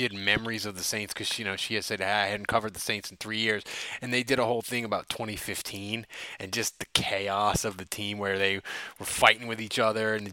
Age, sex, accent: 20-39, male, American